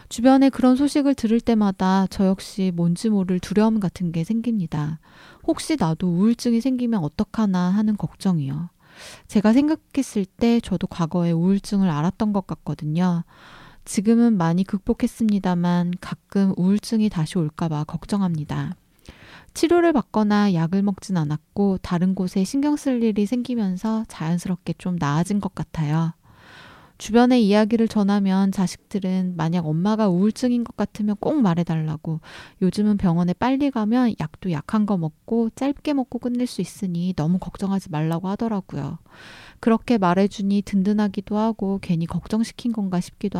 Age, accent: 20-39, native